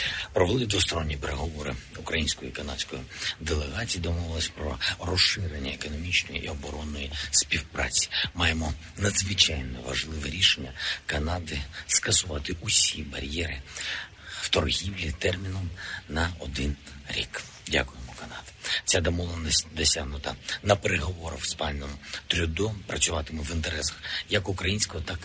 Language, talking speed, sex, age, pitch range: Ukrainian, 105 wpm, male, 50-69, 75-95 Hz